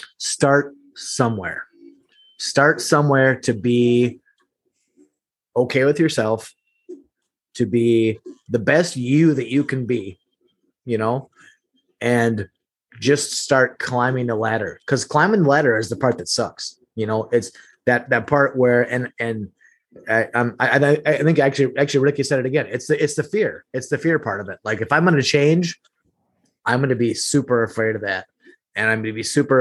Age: 30-49